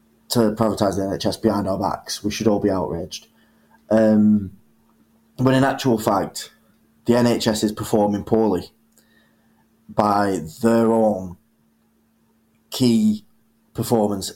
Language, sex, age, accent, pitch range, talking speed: English, male, 20-39, British, 100-115 Hz, 130 wpm